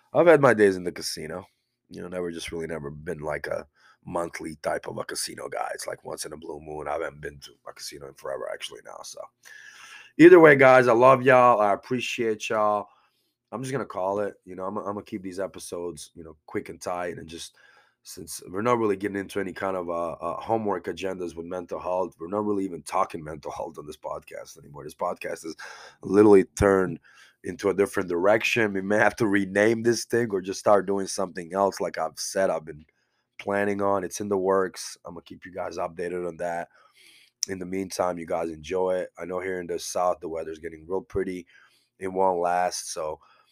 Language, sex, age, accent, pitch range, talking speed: English, male, 20-39, American, 85-105 Hz, 220 wpm